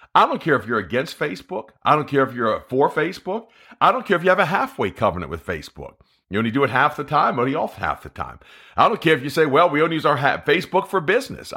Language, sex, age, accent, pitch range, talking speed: English, male, 50-69, American, 130-190 Hz, 265 wpm